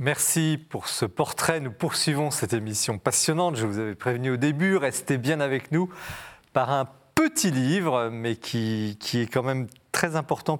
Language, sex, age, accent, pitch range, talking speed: French, male, 40-59, French, 110-140 Hz, 175 wpm